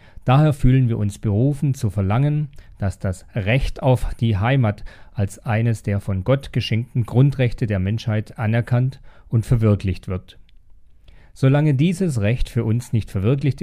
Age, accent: 40-59, German